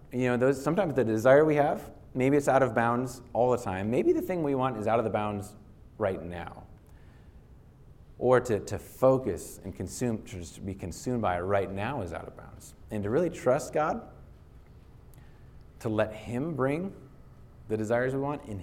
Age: 30-49